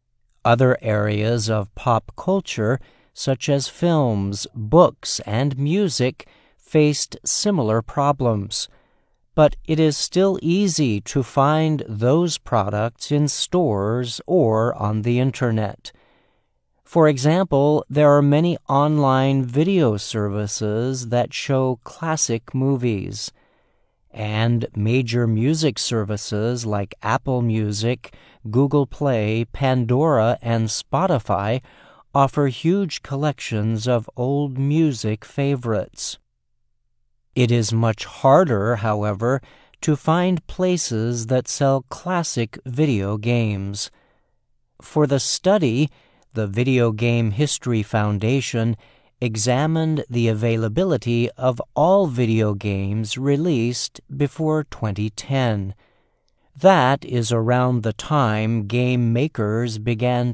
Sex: male